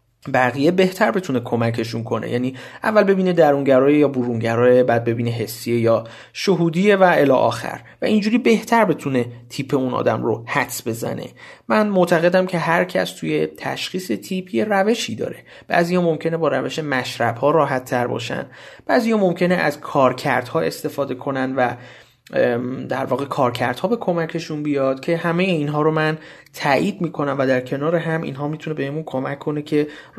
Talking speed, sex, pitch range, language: 155 wpm, male, 125-175 Hz, Persian